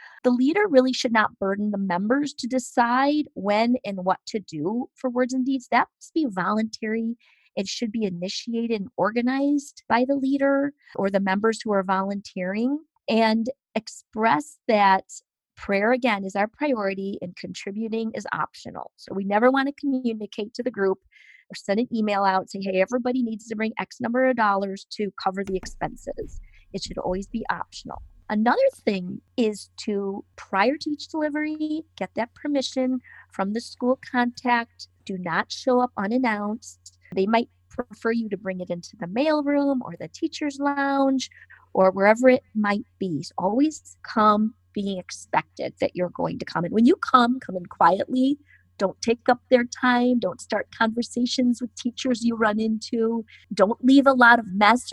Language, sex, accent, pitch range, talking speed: English, female, American, 195-255 Hz, 175 wpm